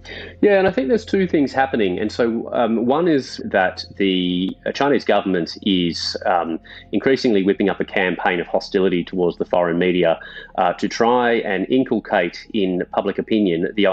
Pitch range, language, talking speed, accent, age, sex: 90-110 Hz, English, 170 wpm, Australian, 30-49, male